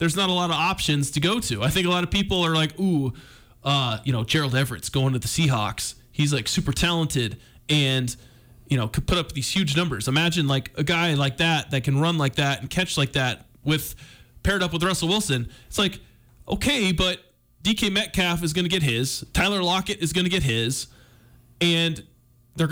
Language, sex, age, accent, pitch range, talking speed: English, male, 20-39, American, 125-160 Hz, 215 wpm